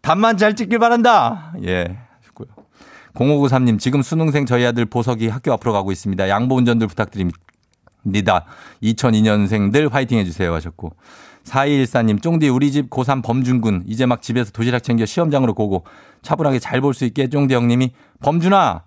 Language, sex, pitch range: Korean, male, 110-155 Hz